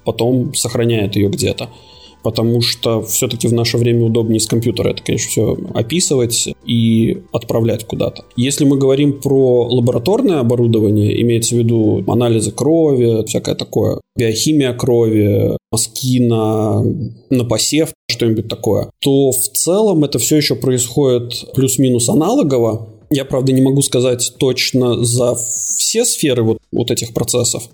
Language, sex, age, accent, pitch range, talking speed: Russian, male, 20-39, native, 115-135 Hz, 135 wpm